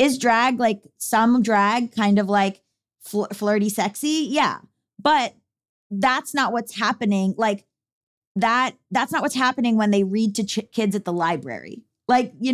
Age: 20-39